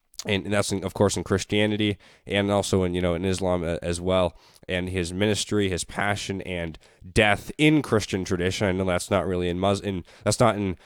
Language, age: English, 20-39